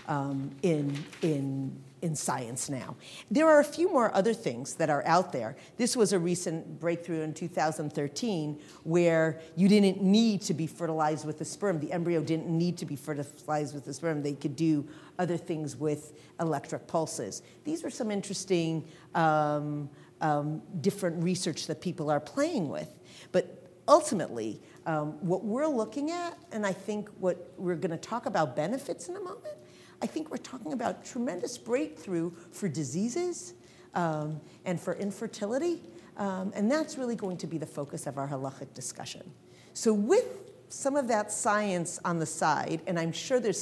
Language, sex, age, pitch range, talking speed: English, female, 50-69, 155-210 Hz, 170 wpm